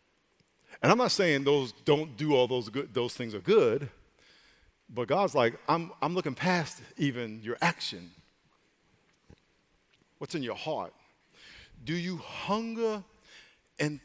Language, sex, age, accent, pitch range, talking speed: English, male, 50-69, American, 130-170 Hz, 135 wpm